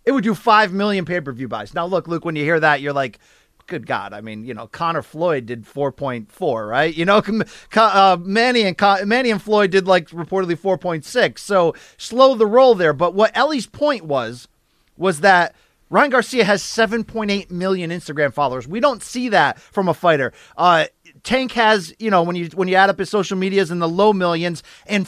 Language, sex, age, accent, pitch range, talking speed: English, male, 30-49, American, 165-220 Hz, 205 wpm